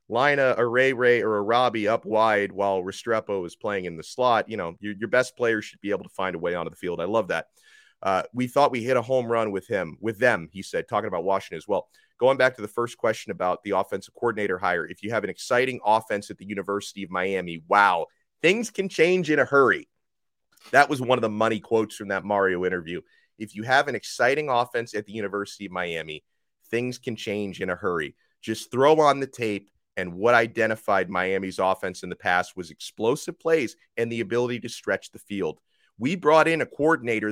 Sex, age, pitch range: male, 30-49, 100-130 Hz